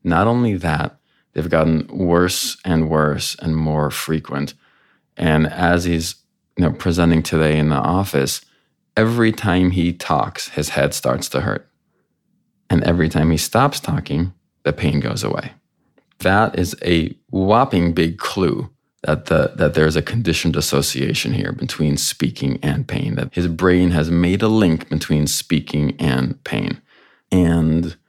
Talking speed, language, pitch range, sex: 145 wpm, English, 80-95 Hz, male